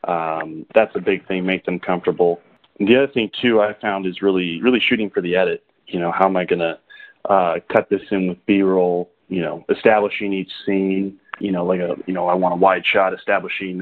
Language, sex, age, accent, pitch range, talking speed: English, male, 20-39, American, 90-105 Hz, 230 wpm